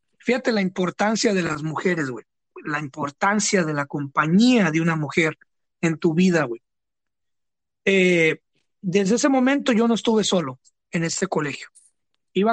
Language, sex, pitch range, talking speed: English, male, 165-210 Hz, 145 wpm